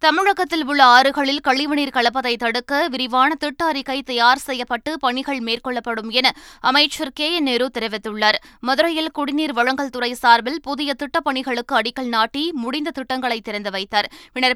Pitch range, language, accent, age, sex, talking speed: 235-285 Hz, Tamil, native, 20-39, female, 130 wpm